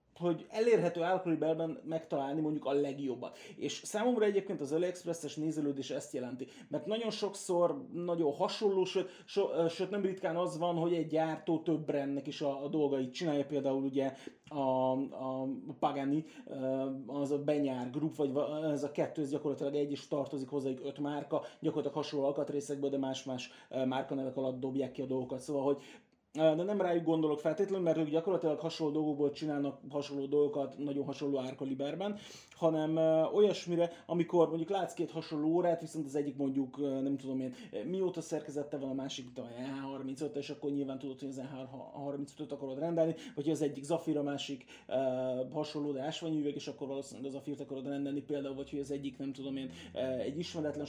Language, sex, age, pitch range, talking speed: Hungarian, male, 30-49, 135-160 Hz, 170 wpm